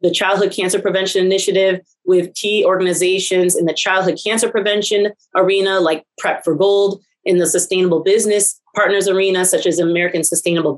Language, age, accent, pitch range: English, 30-49, American, 175-205 Hz